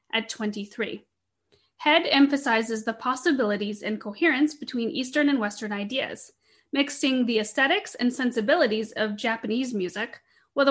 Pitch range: 220-280 Hz